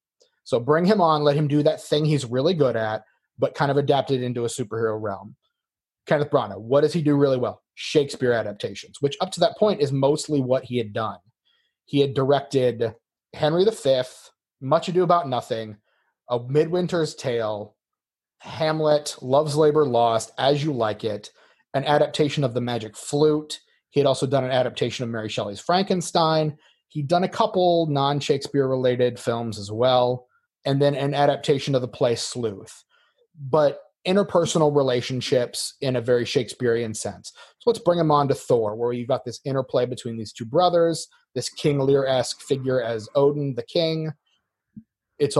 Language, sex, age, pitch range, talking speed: English, male, 30-49, 125-155 Hz, 170 wpm